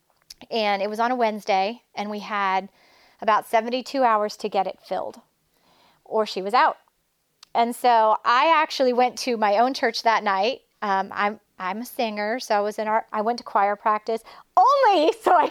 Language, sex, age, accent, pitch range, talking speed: English, female, 30-49, American, 210-285 Hz, 190 wpm